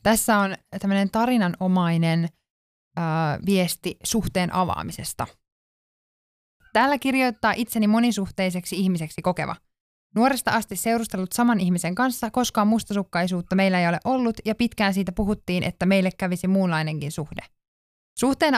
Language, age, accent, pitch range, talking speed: Finnish, 20-39, native, 180-225 Hz, 115 wpm